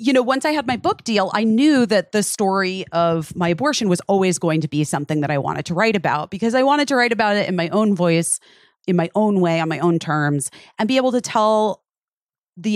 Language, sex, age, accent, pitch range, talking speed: English, female, 30-49, American, 175-225 Hz, 250 wpm